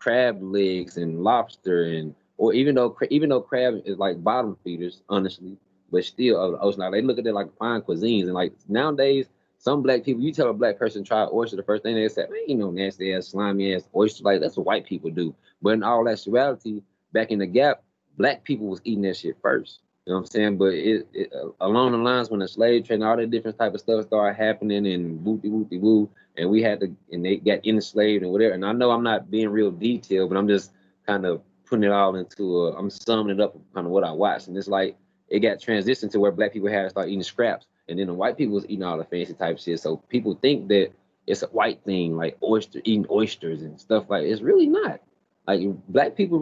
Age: 20-39